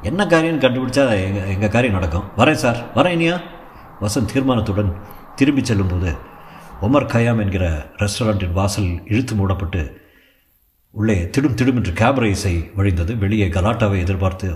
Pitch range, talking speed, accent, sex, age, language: 90-115 Hz, 130 wpm, native, male, 50-69, Tamil